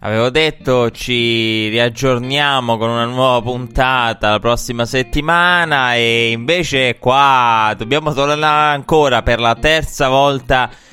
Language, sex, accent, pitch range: Italian, male, native, 110-130 Hz